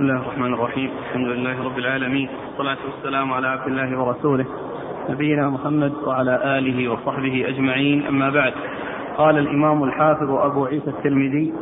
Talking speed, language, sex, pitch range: 140 wpm, Arabic, male, 145-165 Hz